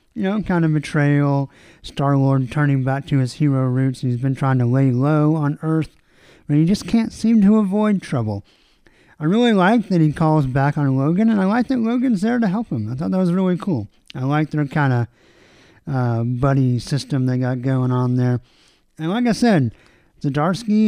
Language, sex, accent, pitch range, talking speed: English, male, American, 130-175 Hz, 200 wpm